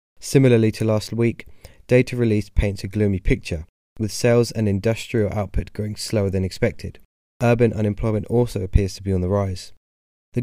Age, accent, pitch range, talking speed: 20-39, British, 95-115 Hz, 165 wpm